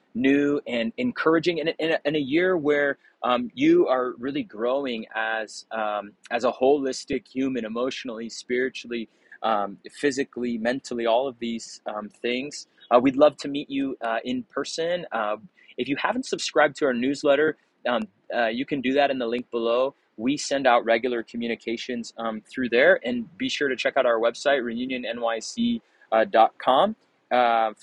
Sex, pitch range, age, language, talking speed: male, 115-145 Hz, 30-49, English, 160 wpm